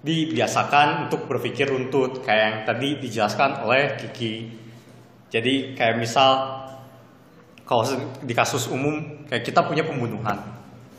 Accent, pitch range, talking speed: native, 115-155 Hz, 115 wpm